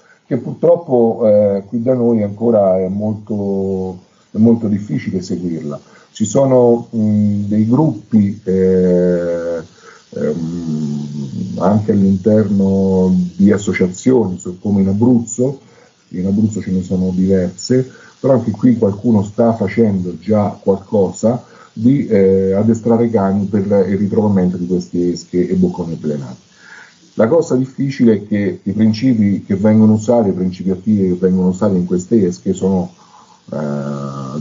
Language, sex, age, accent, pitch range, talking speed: Italian, male, 50-69, native, 90-110 Hz, 130 wpm